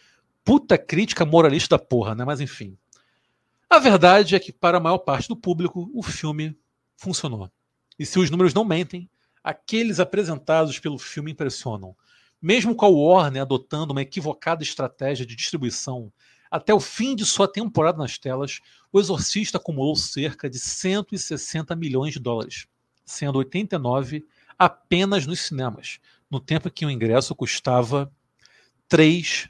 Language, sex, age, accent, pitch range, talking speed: Portuguese, male, 50-69, Brazilian, 130-180 Hz, 145 wpm